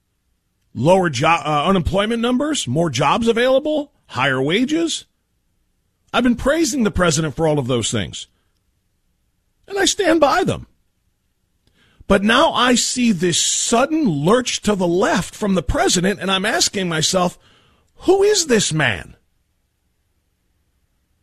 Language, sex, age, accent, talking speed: English, male, 40-59, American, 125 wpm